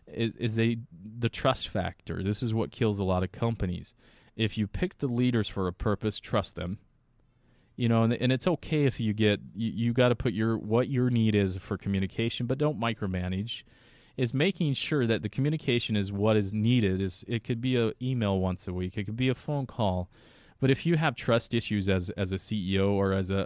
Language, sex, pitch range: English, male, 100-120 Hz